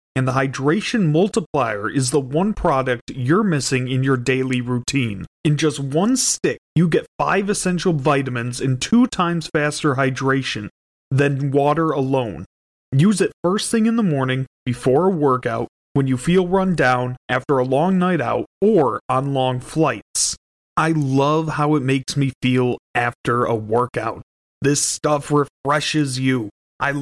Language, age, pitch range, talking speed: English, 30-49, 130-165 Hz, 155 wpm